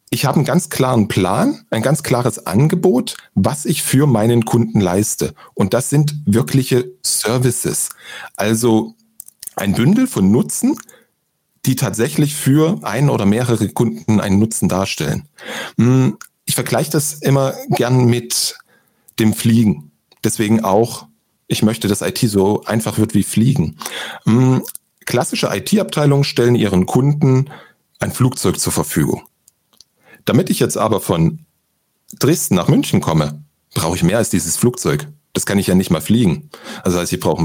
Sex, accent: male, German